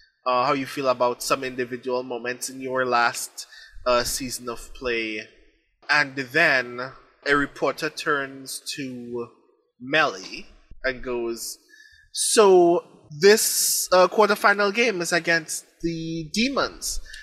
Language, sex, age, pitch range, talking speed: English, male, 20-39, 130-160 Hz, 115 wpm